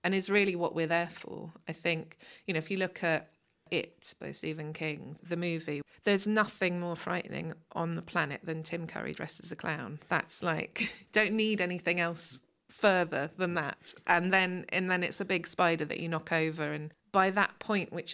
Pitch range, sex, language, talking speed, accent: 160-185 Hz, female, English, 200 wpm, British